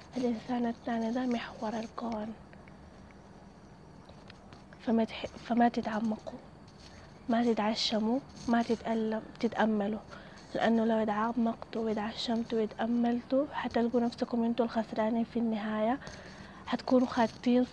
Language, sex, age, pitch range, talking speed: Arabic, female, 20-39, 220-240 Hz, 90 wpm